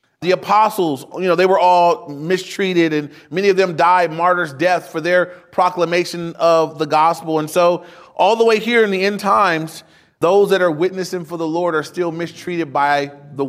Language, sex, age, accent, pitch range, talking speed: English, male, 30-49, American, 170-215 Hz, 190 wpm